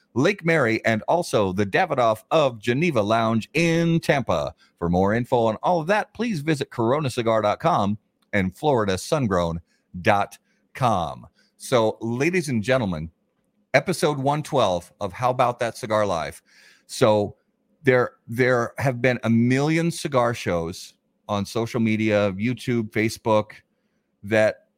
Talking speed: 120 wpm